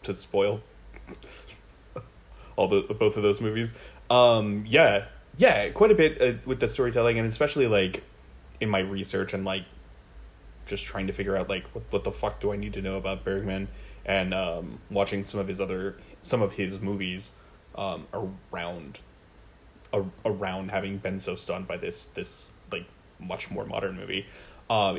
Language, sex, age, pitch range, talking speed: English, male, 20-39, 95-105 Hz, 170 wpm